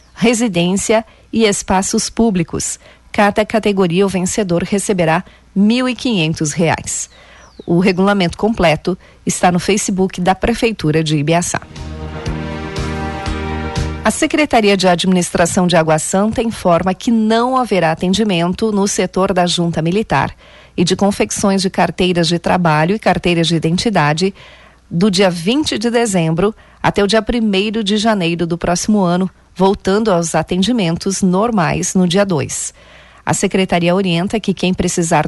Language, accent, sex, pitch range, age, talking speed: Portuguese, Brazilian, female, 170-210 Hz, 40-59, 130 wpm